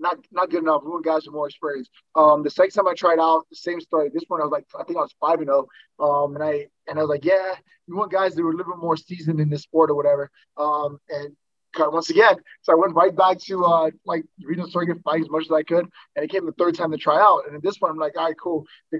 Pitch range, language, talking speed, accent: 155-185 Hz, English, 310 wpm, American